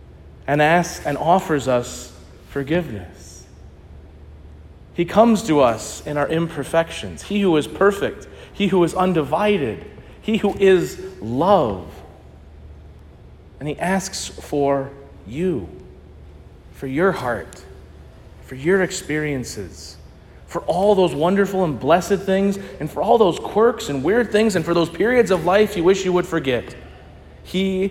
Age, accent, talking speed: 40-59, American, 135 wpm